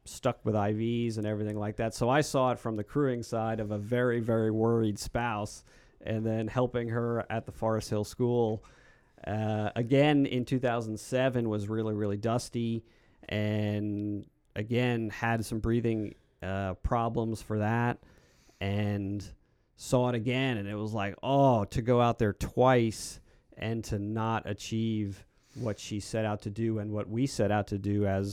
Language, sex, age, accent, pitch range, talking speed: English, male, 40-59, American, 105-120 Hz, 165 wpm